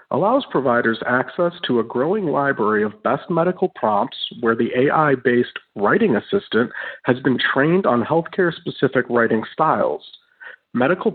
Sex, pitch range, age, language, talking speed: male, 120-180 Hz, 50-69, English, 130 wpm